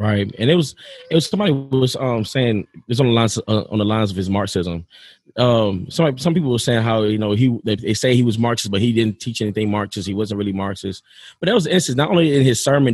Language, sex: English, male